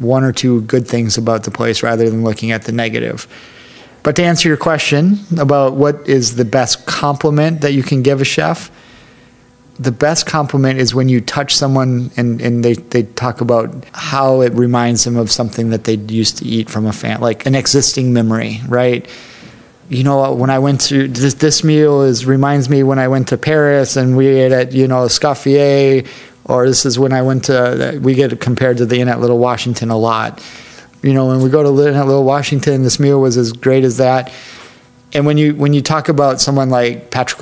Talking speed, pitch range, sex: 210 wpm, 120-135 Hz, male